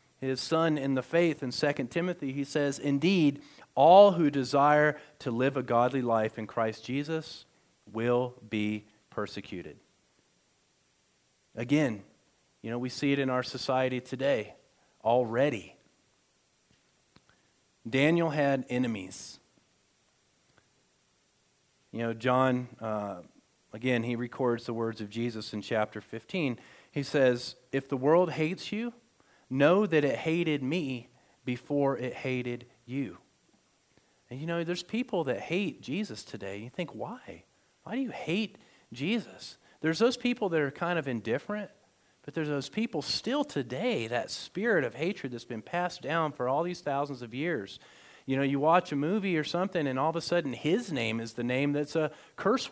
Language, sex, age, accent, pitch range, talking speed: English, male, 40-59, American, 120-160 Hz, 155 wpm